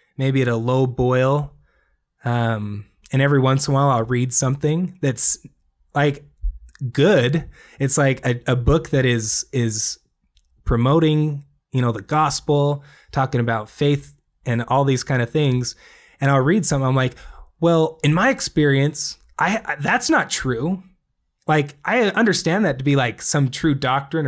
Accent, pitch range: American, 125-150 Hz